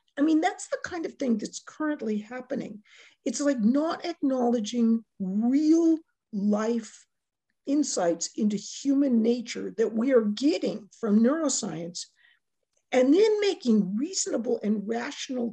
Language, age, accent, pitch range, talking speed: English, 50-69, American, 210-280 Hz, 125 wpm